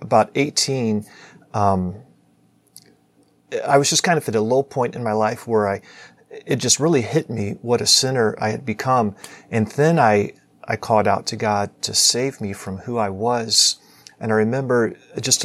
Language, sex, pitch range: English, male, 105-135 Hz